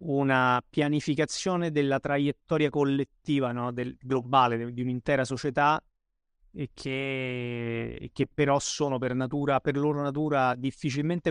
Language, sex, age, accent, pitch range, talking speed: Italian, male, 30-49, native, 130-150 Hz, 120 wpm